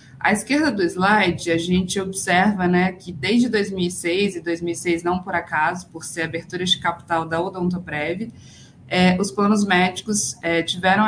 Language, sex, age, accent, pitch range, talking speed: Portuguese, female, 20-39, Brazilian, 170-200 Hz, 155 wpm